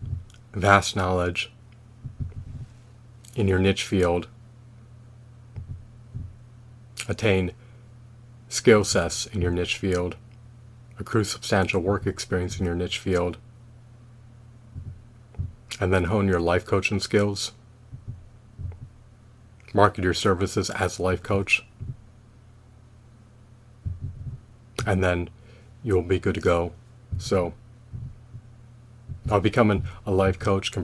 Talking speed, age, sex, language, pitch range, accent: 95 wpm, 30-49, male, English, 95-115 Hz, American